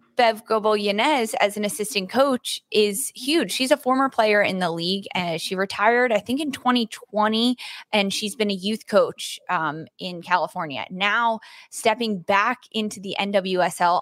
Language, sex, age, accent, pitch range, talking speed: English, female, 20-39, American, 170-220 Hz, 160 wpm